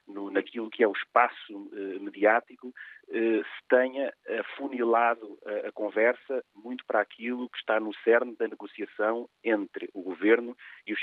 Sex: male